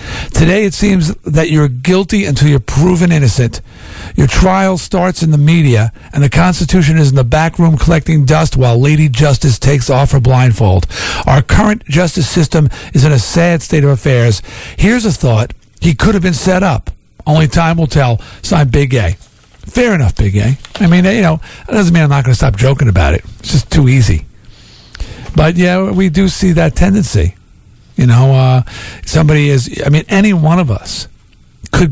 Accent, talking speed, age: American, 190 wpm, 50-69